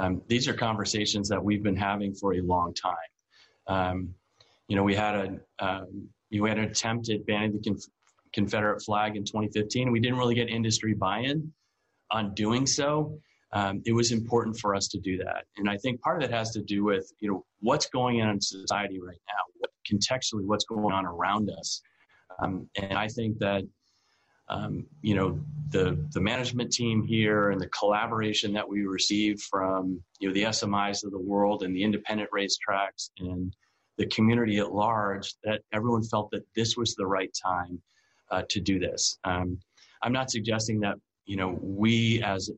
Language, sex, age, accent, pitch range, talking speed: English, male, 30-49, American, 100-110 Hz, 185 wpm